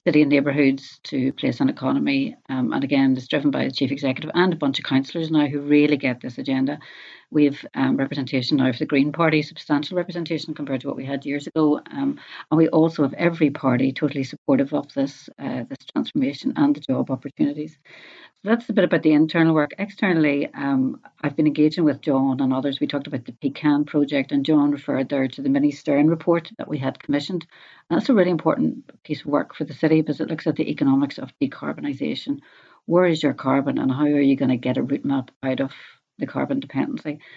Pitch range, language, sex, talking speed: 140-175 Hz, English, female, 220 wpm